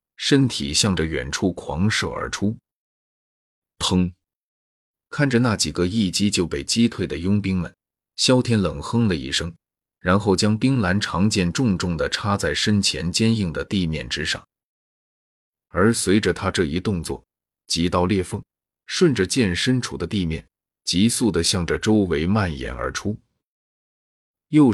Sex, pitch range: male, 85-110 Hz